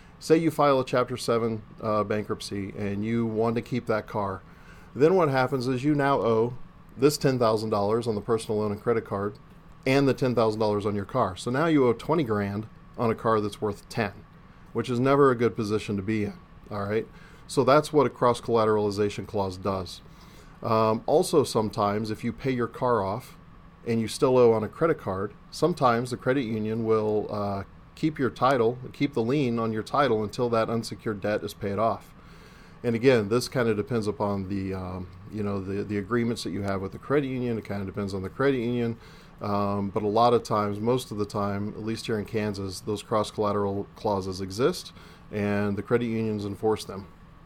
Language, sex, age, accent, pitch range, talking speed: English, male, 40-59, American, 105-120 Hz, 210 wpm